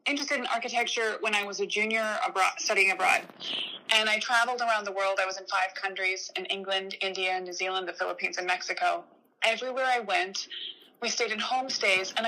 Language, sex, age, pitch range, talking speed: English, female, 20-39, 195-255 Hz, 185 wpm